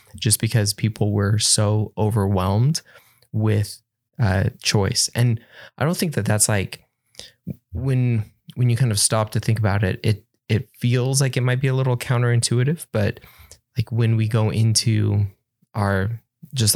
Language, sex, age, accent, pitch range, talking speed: English, male, 20-39, American, 105-125 Hz, 160 wpm